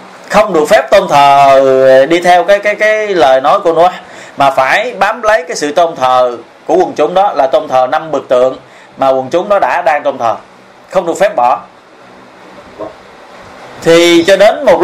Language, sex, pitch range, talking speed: Vietnamese, male, 140-185 Hz, 195 wpm